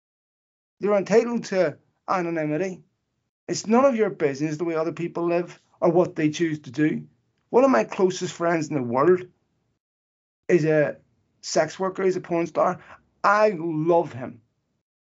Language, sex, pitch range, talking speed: English, male, 150-185 Hz, 160 wpm